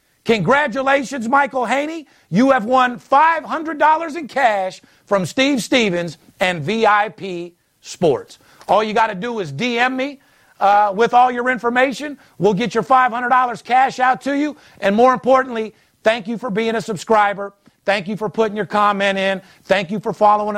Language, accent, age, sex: English, American, 50-69, male